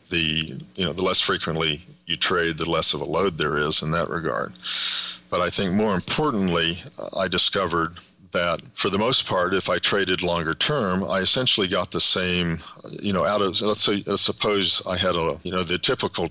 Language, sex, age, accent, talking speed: English, male, 50-69, American, 200 wpm